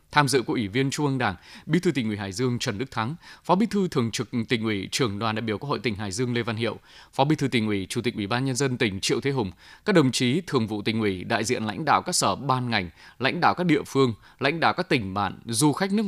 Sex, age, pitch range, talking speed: male, 20-39, 110-150 Hz, 295 wpm